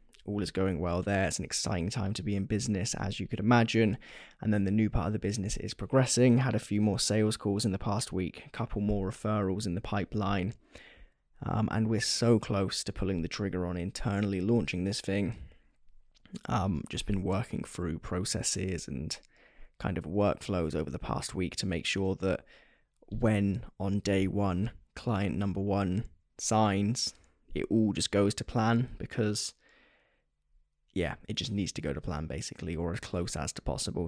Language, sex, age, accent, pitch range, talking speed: English, male, 10-29, British, 90-110 Hz, 185 wpm